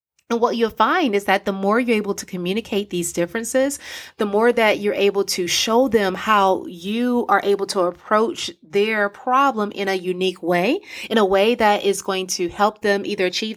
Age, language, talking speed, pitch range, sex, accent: 30-49, English, 200 wpm, 175-220 Hz, female, American